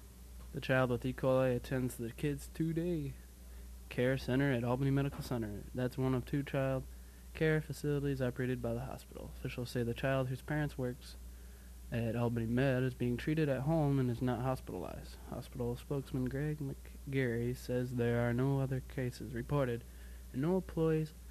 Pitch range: 115-135 Hz